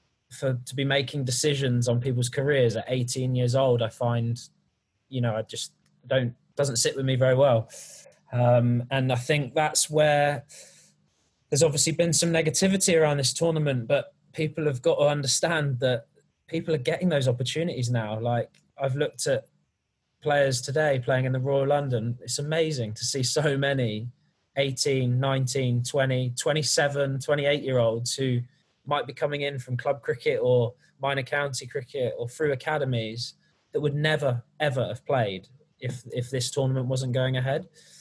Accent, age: British, 20-39